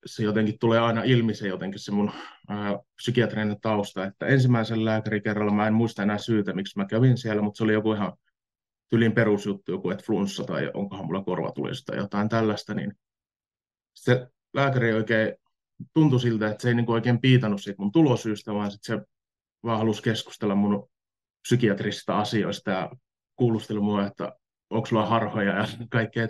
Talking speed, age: 165 wpm, 30-49